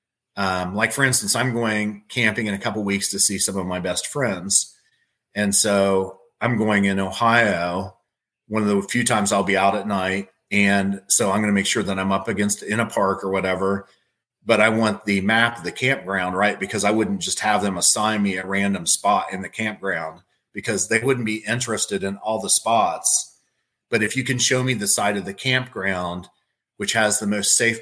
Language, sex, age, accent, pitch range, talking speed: English, male, 40-59, American, 95-110 Hz, 215 wpm